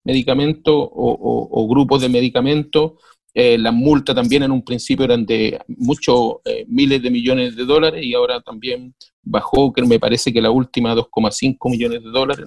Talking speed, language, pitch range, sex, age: 180 wpm, Spanish, 125-165 Hz, male, 40-59